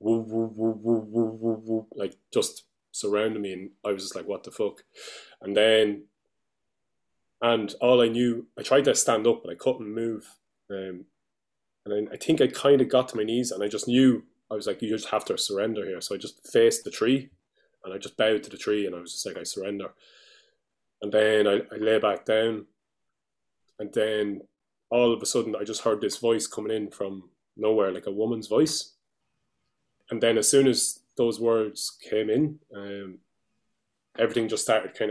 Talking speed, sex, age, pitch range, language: 205 wpm, male, 20-39, 105-120 Hz, English